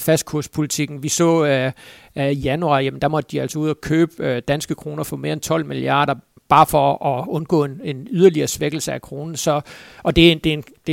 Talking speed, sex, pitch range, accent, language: 230 wpm, male, 150-170 Hz, native, Danish